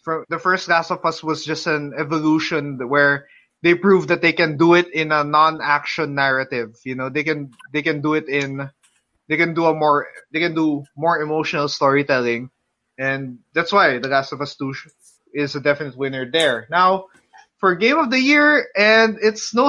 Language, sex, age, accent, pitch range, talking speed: English, male, 20-39, Filipino, 150-195 Hz, 190 wpm